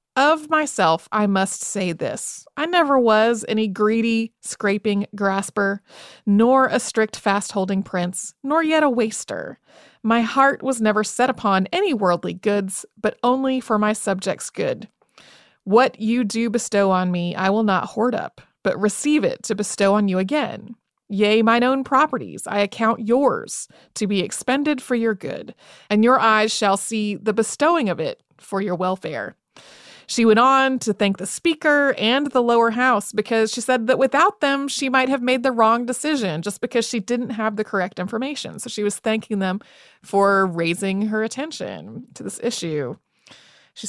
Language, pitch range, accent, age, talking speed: English, 200-255 Hz, American, 30-49, 170 wpm